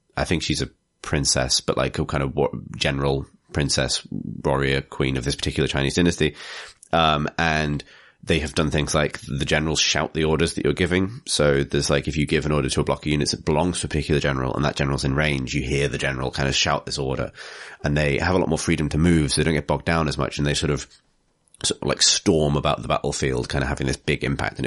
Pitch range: 70-80 Hz